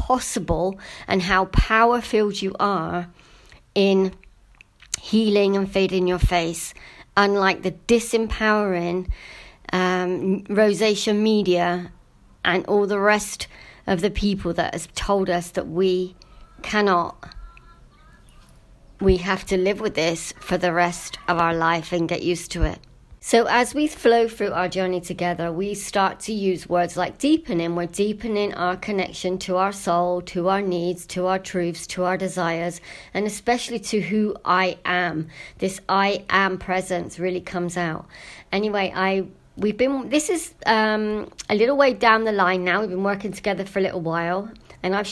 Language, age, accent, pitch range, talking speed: English, 40-59, British, 180-205 Hz, 155 wpm